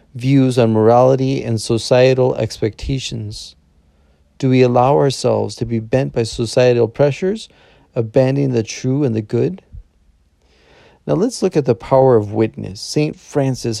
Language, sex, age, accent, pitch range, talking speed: English, male, 40-59, American, 115-140 Hz, 140 wpm